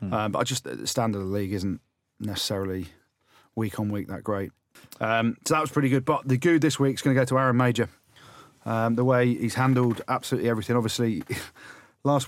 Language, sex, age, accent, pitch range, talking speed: English, male, 40-59, British, 100-120 Hz, 210 wpm